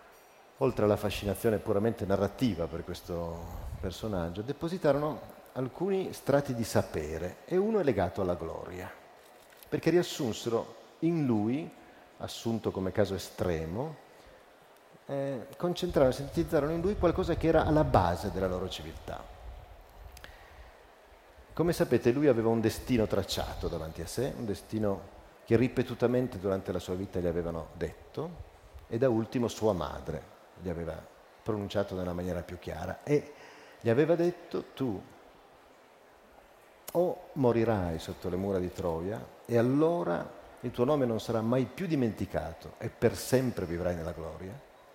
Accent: native